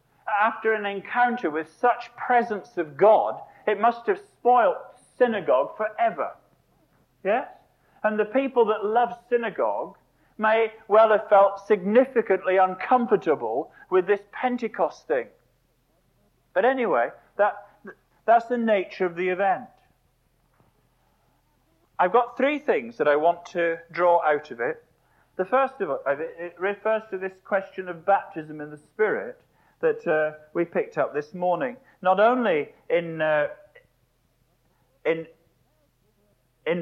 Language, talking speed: English, 130 wpm